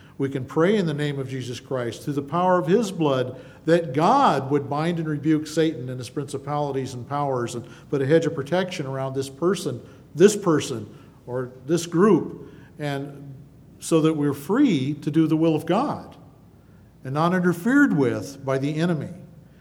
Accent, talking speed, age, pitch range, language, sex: American, 180 wpm, 50-69, 135-165 Hz, English, male